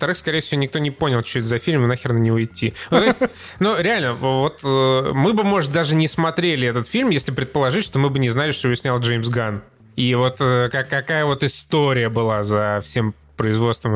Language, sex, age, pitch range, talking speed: Russian, male, 20-39, 115-150 Hz, 210 wpm